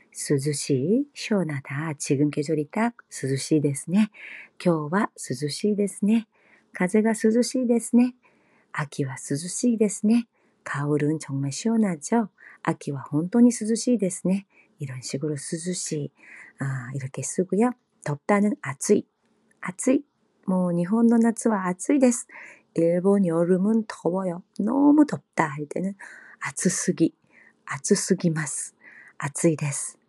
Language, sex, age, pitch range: Korean, female, 40-59, 150-220 Hz